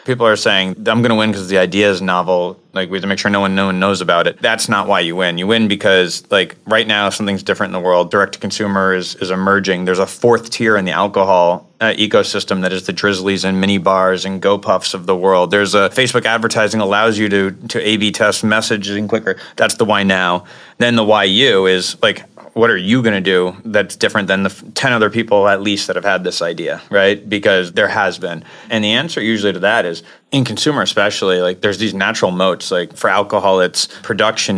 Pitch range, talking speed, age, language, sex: 95-110 Hz, 240 wpm, 30-49, English, male